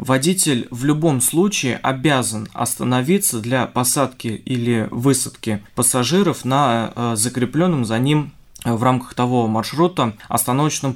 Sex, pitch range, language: male, 120-145 Hz, Russian